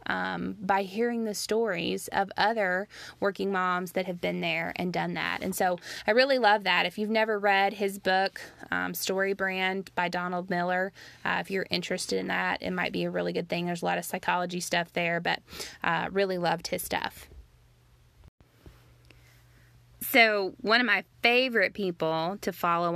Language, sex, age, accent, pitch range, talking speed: English, female, 20-39, American, 170-200 Hz, 180 wpm